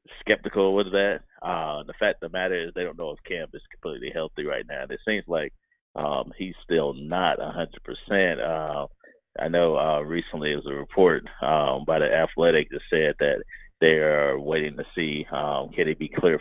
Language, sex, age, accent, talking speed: English, male, 30-49, American, 200 wpm